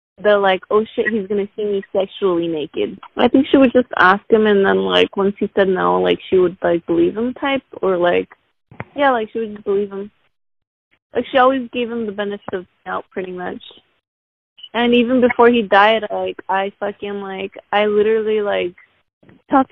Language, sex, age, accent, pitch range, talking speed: English, female, 20-39, American, 195-225 Hz, 200 wpm